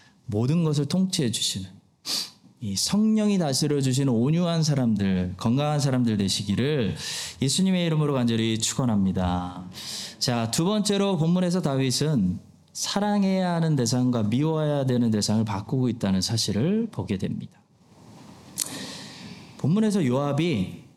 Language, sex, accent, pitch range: Korean, male, native, 110-170 Hz